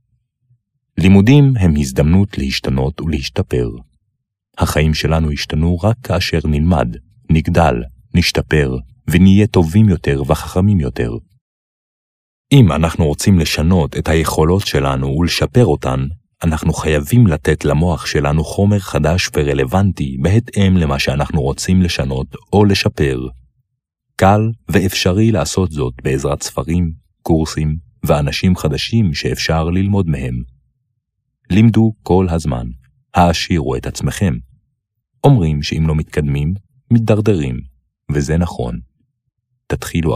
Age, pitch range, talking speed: 40-59, 75-110 Hz, 100 wpm